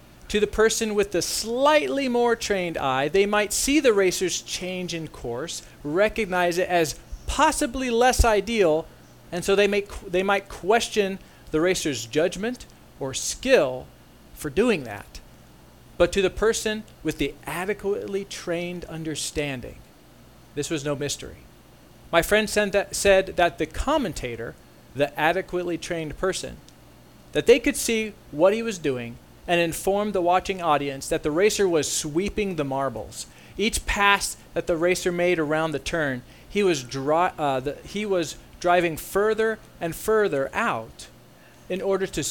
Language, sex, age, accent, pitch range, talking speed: English, male, 40-59, American, 150-205 Hz, 140 wpm